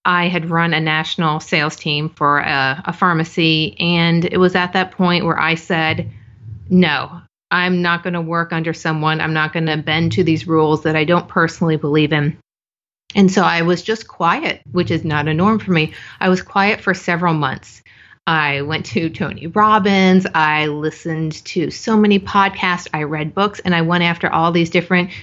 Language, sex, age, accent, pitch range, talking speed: English, female, 30-49, American, 160-195 Hz, 190 wpm